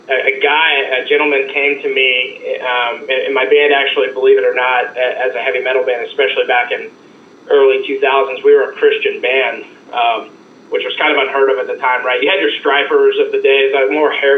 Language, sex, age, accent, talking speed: English, male, 30-49, American, 220 wpm